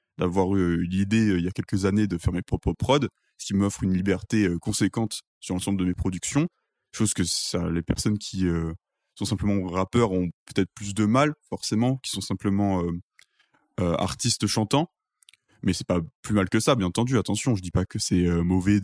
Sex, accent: male, French